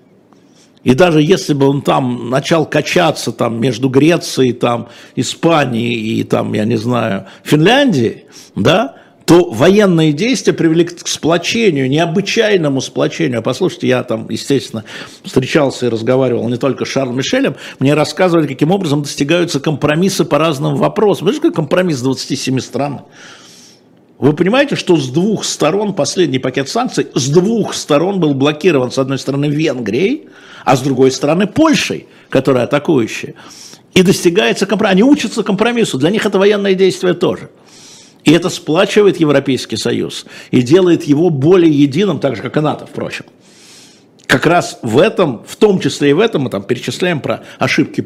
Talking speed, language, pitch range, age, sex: 155 wpm, Russian, 130-180 Hz, 60-79, male